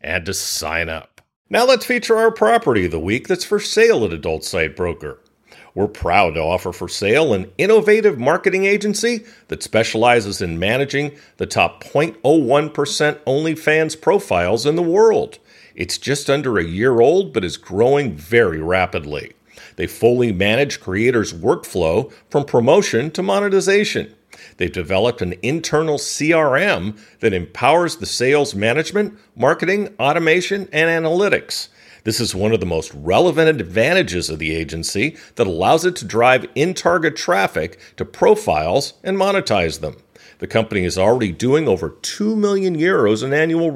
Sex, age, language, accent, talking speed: male, 50-69, English, American, 150 wpm